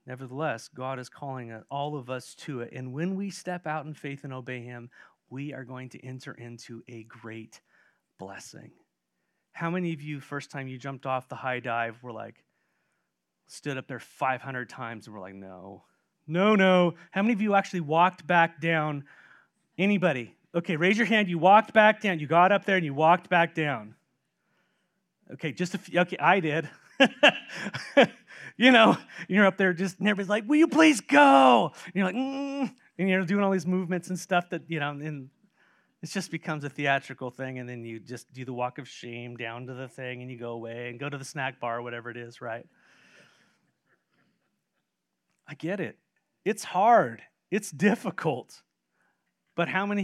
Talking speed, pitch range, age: 190 wpm, 125-185 Hz, 30-49